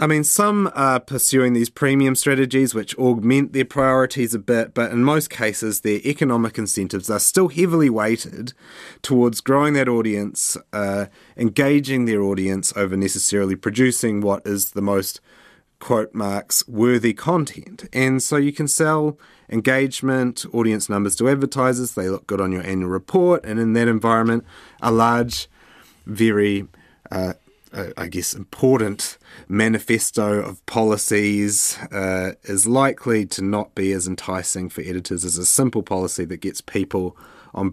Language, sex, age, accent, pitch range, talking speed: English, male, 30-49, Australian, 100-130 Hz, 150 wpm